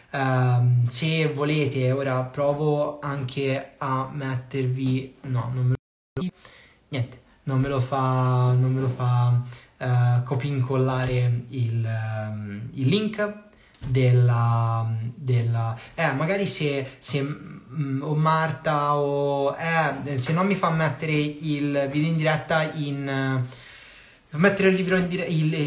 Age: 20-39